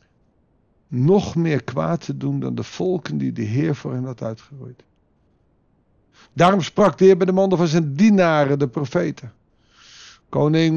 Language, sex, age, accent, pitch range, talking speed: Dutch, male, 50-69, Dutch, 130-175 Hz, 155 wpm